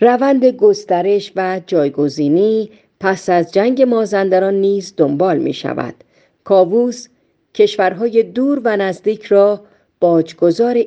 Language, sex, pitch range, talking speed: Persian, female, 170-225 Hz, 105 wpm